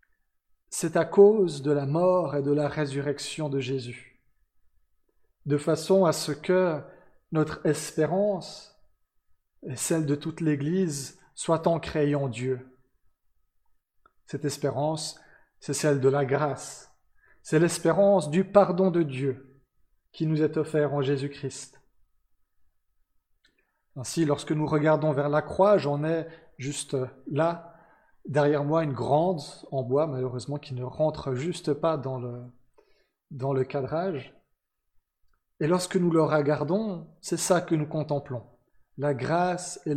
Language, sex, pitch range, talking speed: French, male, 135-165 Hz, 130 wpm